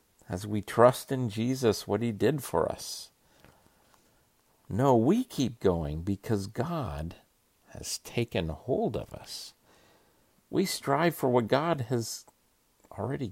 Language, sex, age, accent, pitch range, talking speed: English, male, 50-69, American, 90-125 Hz, 125 wpm